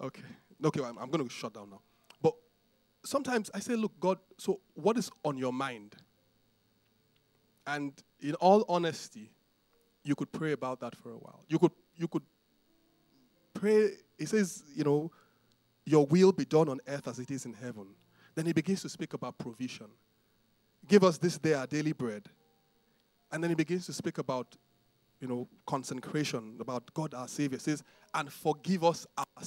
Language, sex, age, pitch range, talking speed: English, male, 20-39, 135-195 Hz, 175 wpm